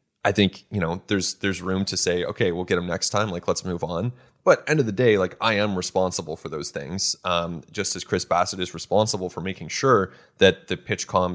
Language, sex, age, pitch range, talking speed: English, male, 20-39, 95-115 Hz, 240 wpm